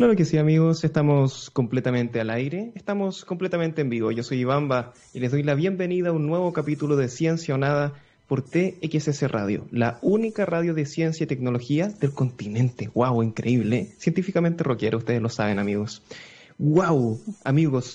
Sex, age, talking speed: male, 20-39, 165 wpm